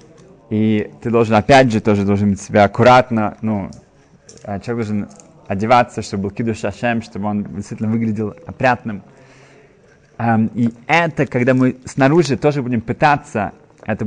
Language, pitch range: Russian, 115-145 Hz